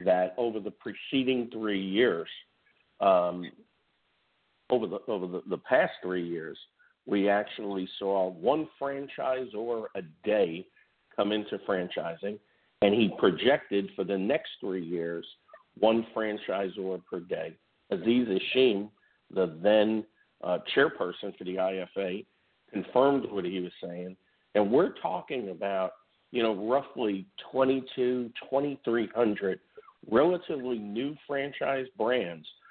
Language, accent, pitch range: English, American, 95-120 Hz